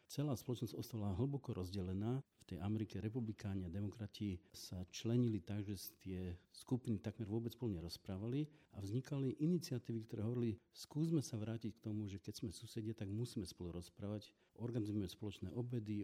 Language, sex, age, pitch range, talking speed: Slovak, male, 50-69, 95-115 Hz, 155 wpm